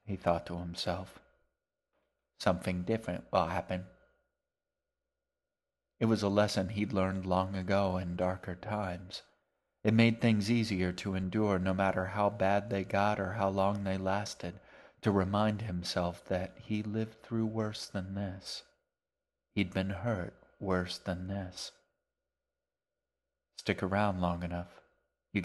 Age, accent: 40-59, American